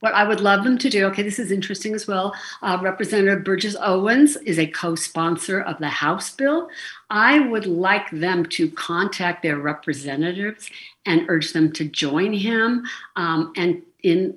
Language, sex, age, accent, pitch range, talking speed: English, female, 60-79, American, 165-210 Hz, 170 wpm